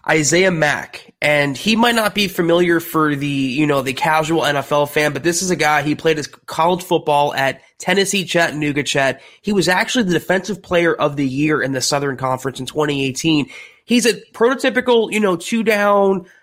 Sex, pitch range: male, 155-200 Hz